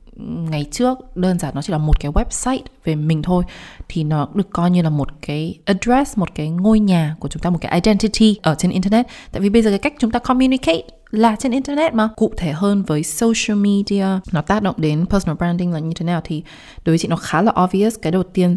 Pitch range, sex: 155-200 Hz, female